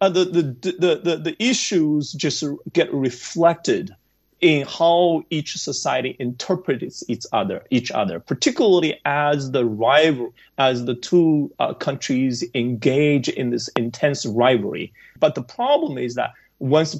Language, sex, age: English, male, 30-49